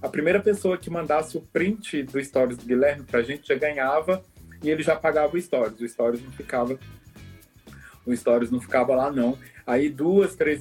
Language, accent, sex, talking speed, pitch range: Portuguese, Brazilian, male, 175 wpm, 125-155 Hz